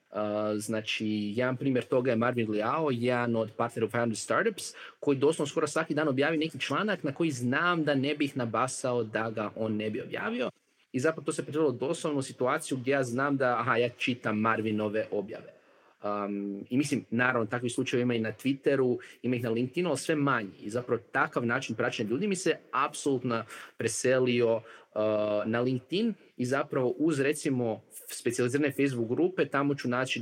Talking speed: 180 wpm